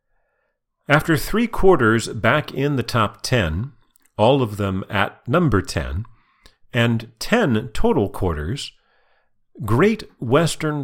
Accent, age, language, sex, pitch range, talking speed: American, 40-59, English, male, 95-130 Hz, 110 wpm